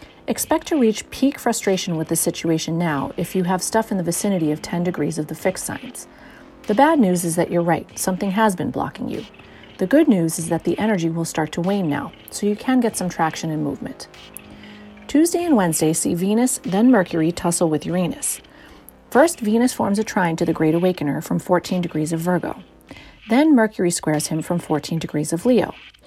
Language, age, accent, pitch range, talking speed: English, 40-59, American, 165-215 Hz, 205 wpm